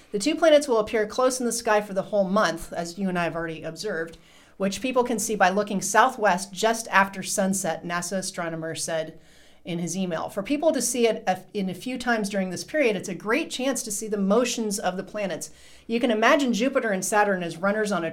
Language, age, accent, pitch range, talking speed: English, 40-59, American, 180-225 Hz, 230 wpm